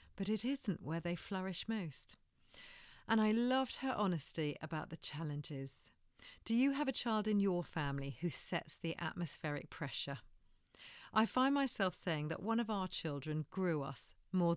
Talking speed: 165 wpm